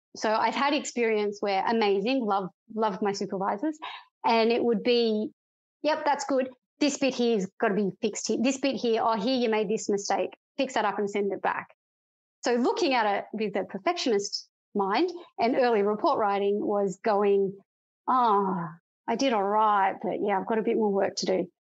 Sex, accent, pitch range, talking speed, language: female, Australian, 200-255 Hz, 200 wpm, English